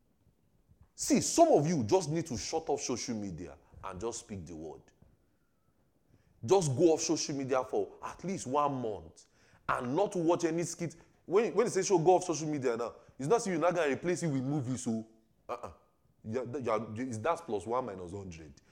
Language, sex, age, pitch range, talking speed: English, male, 30-49, 100-155 Hz, 195 wpm